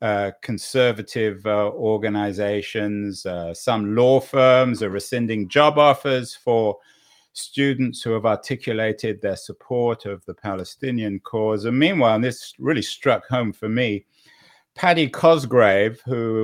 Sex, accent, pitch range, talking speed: male, British, 100-125 Hz, 125 wpm